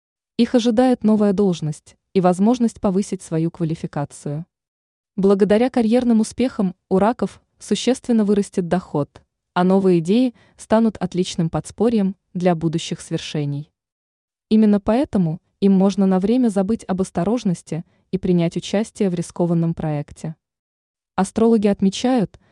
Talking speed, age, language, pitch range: 115 wpm, 20-39, Russian, 165-210 Hz